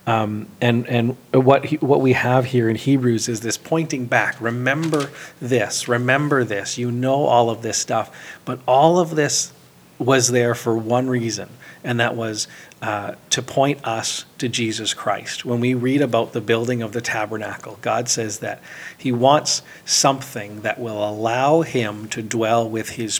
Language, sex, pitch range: English, male, 115-130 Hz